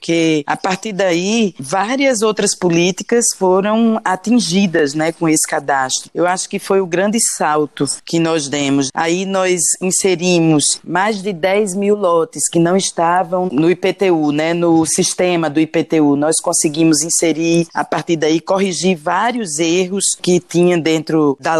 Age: 20-39